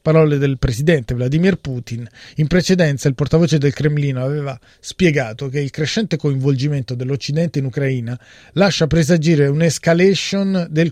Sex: male